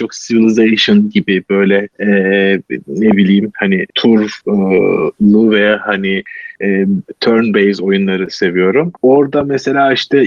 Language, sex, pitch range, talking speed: Turkish, male, 105-145 Hz, 105 wpm